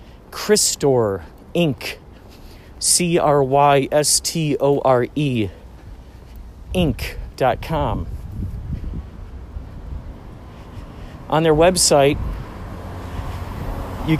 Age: 40-59